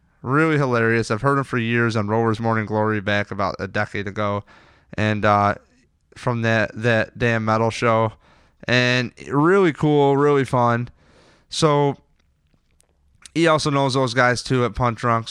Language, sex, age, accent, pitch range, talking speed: English, male, 20-39, American, 115-145 Hz, 155 wpm